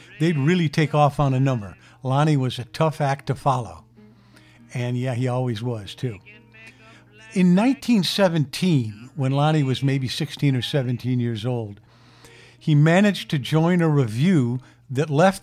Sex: male